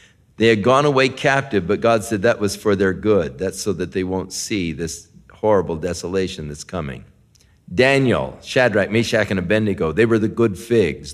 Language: English